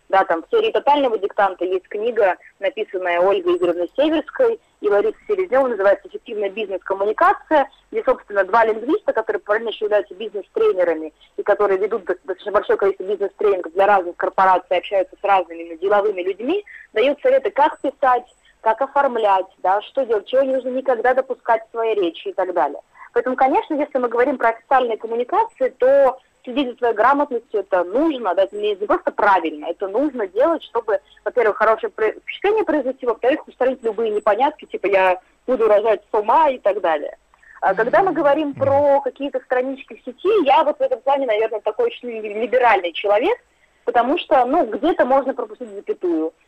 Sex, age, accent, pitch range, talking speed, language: female, 20-39, native, 205-310 Hz, 165 wpm, Russian